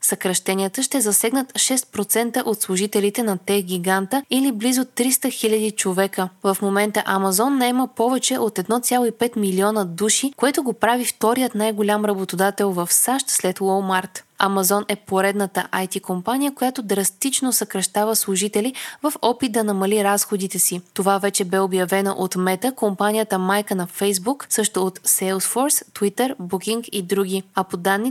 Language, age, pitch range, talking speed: Bulgarian, 20-39, 195-235 Hz, 145 wpm